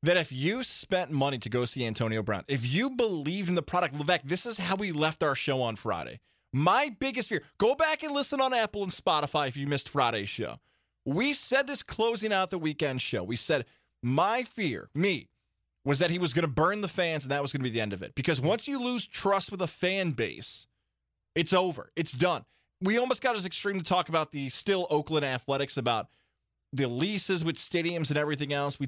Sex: male